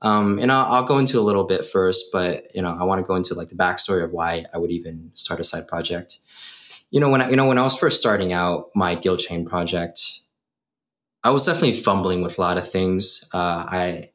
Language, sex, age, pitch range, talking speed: English, male, 20-39, 90-110 Hz, 240 wpm